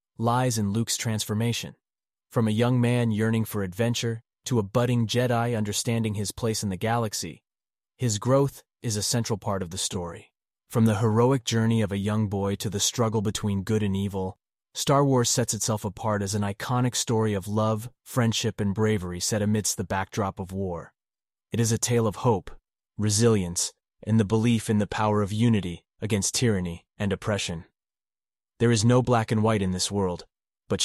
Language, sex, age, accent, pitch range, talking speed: English, male, 30-49, American, 100-115 Hz, 185 wpm